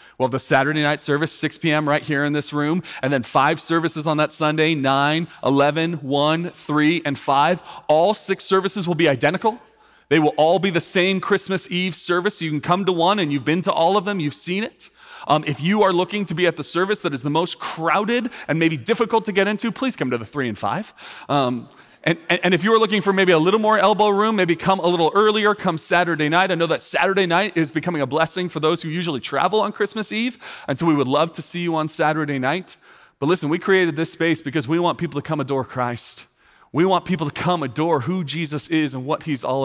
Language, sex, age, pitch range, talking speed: English, male, 30-49, 145-185 Hz, 245 wpm